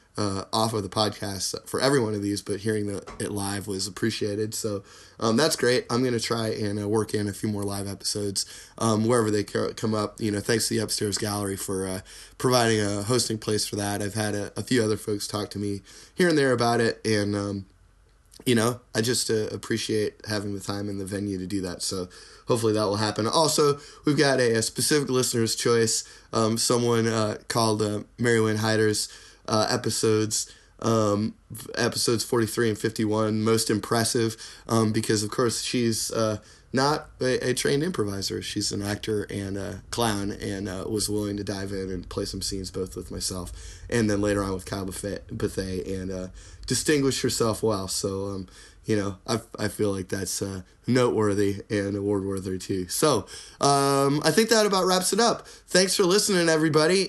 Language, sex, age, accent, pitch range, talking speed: English, male, 20-39, American, 100-120 Hz, 200 wpm